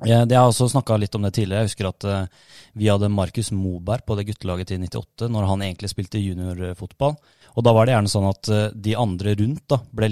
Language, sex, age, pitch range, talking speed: English, male, 20-39, 95-115 Hz, 220 wpm